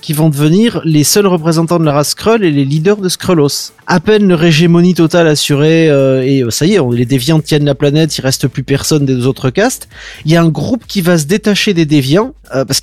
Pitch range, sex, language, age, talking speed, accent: 145-190 Hz, male, French, 30-49, 255 wpm, French